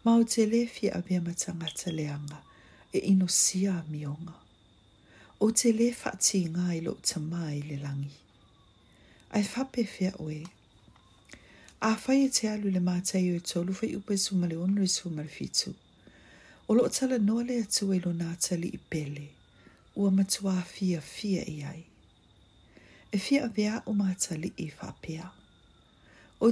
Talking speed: 120 wpm